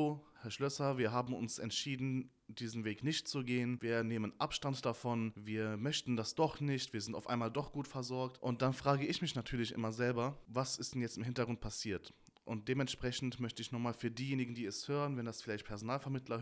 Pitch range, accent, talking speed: 115-140 Hz, German, 205 wpm